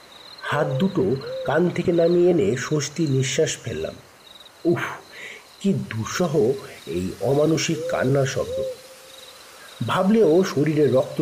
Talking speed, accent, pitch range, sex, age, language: 105 wpm, native, 135-190 Hz, male, 50-69, Bengali